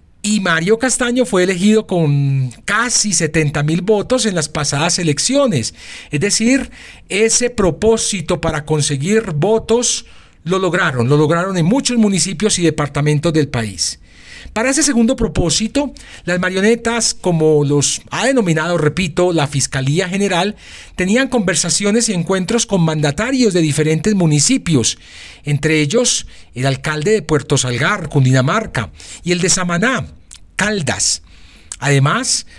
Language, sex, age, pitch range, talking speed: Spanish, male, 40-59, 150-210 Hz, 125 wpm